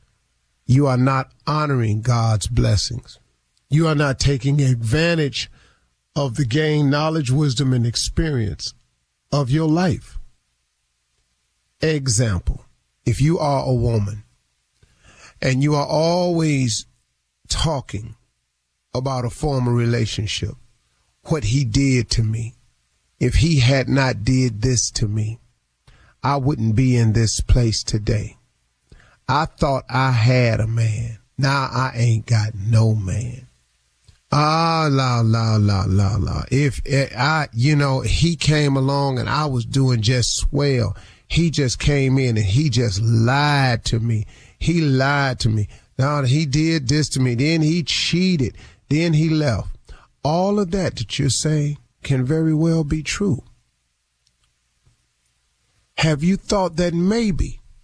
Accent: American